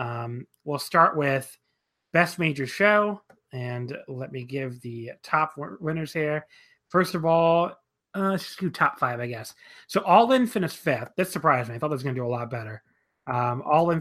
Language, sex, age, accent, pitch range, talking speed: English, male, 30-49, American, 125-160 Hz, 195 wpm